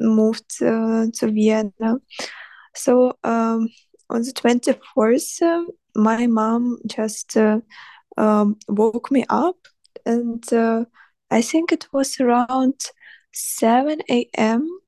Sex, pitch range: female, 225-260 Hz